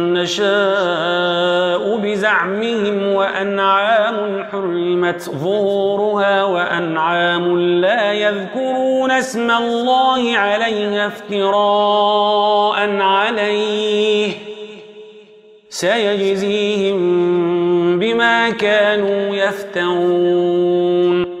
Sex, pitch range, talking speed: male, 180-210 Hz, 50 wpm